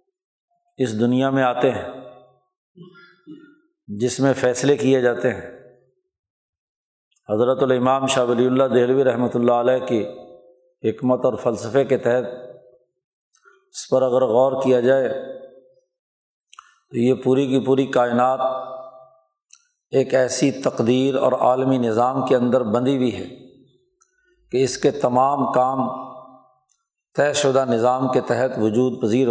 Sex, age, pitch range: male, 50-69, 125-145 Hz